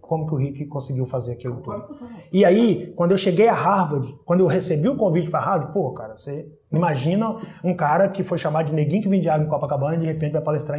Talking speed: 245 wpm